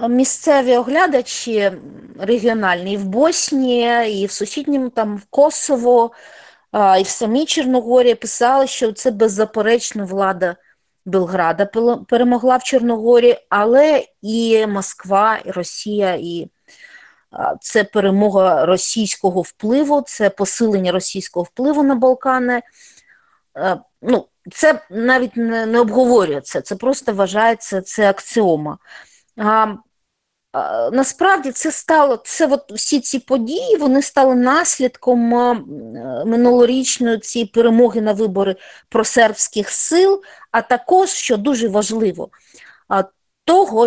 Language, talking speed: English, 105 wpm